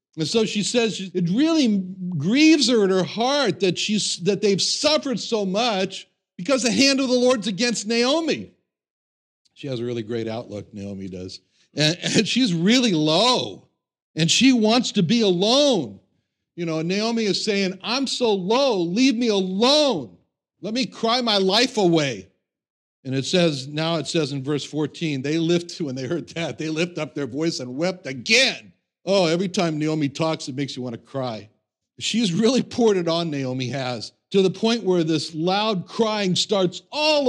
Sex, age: male, 60-79